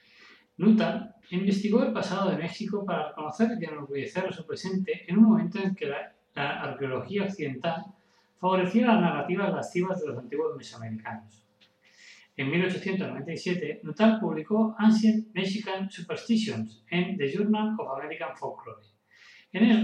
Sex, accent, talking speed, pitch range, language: male, Spanish, 135 wpm, 150-210 Hz, Spanish